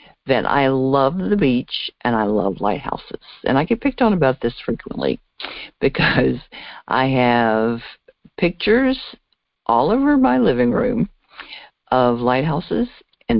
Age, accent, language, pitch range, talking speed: 60-79, American, English, 125-205 Hz, 130 wpm